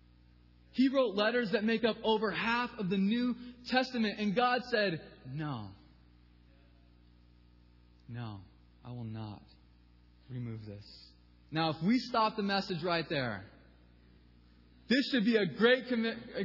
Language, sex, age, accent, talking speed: English, male, 20-39, American, 130 wpm